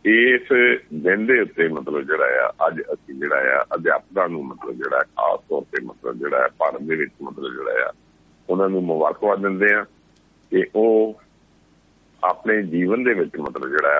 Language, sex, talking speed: Punjabi, male, 140 wpm